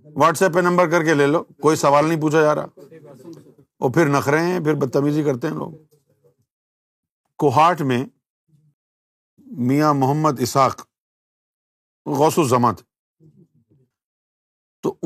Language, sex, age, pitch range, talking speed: Urdu, male, 50-69, 115-160 Hz, 120 wpm